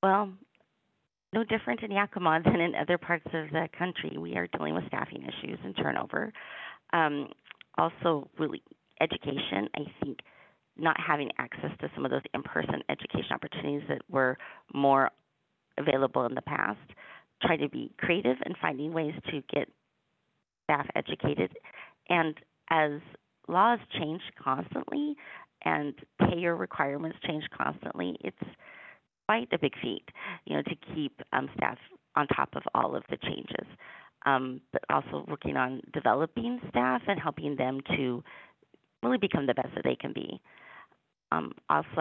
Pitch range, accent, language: 135-170 Hz, American, English